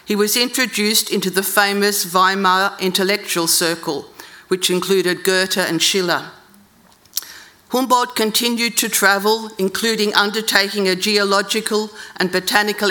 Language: English